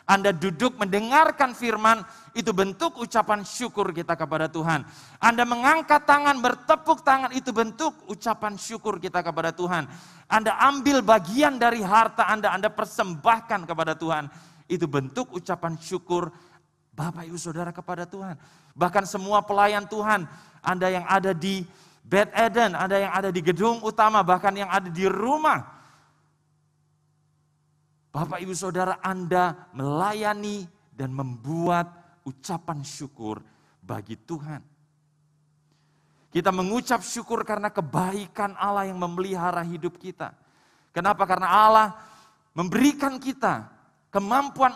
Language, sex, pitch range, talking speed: Indonesian, male, 170-230 Hz, 120 wpm